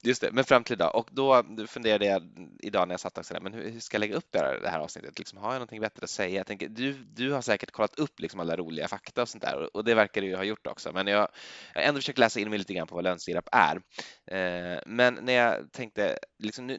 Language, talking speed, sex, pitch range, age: Swedish, 280 wpm, male, 90-120 Hz, 20-39